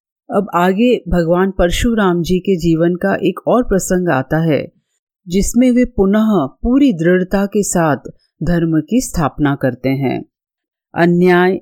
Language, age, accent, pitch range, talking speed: Hindi, 40-59, native, 165-220 Hz, 135 wpm